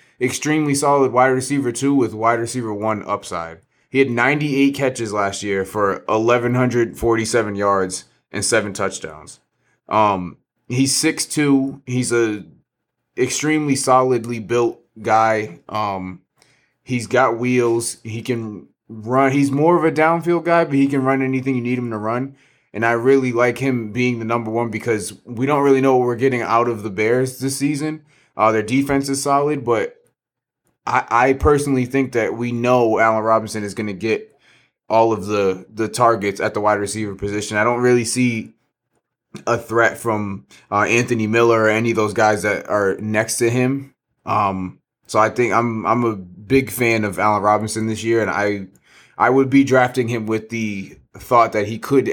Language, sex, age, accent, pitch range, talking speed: English, male, 30-49, American, 105-130 Hz, 175 wpm